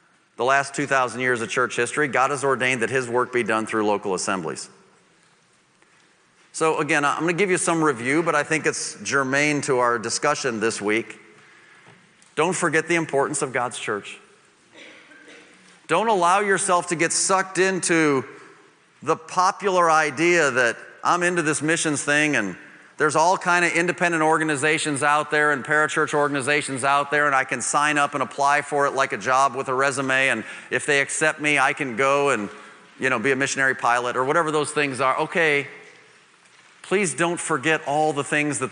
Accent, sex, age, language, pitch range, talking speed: American, male, 40-59, English, 135-160 Hz, 180 wpm